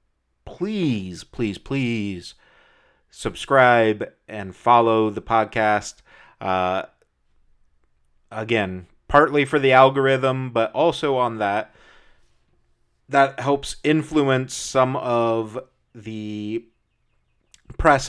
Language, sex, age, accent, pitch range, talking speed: English, male, 30-49, American, 100-130 Hz, 85 wpm